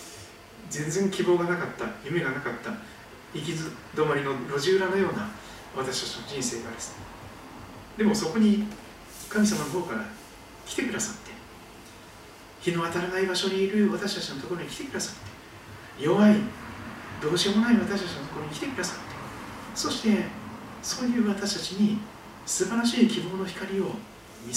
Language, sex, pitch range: Japanese, male, 125-205 Hz